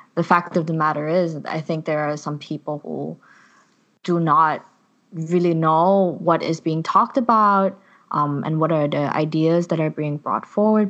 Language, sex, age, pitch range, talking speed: English, female, 20-39, 150-180 Hz, 180 wpm